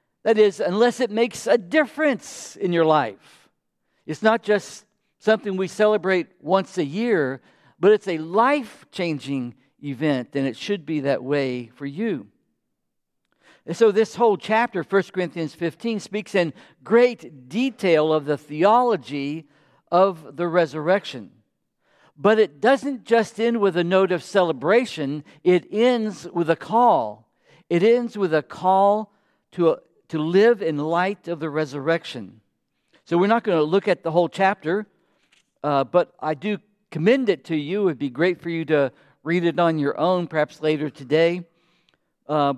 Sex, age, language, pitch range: male, 60-79, English, 150-205 Hz